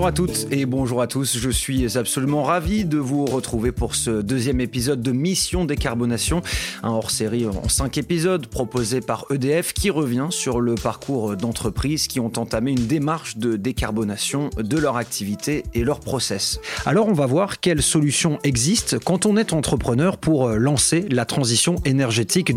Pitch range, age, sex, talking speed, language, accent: 120-165 Hz, 30-49, male, 170 wpm, French, French